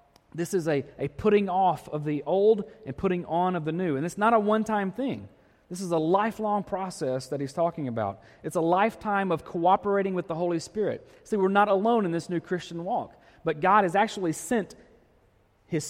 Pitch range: 145-195 Hz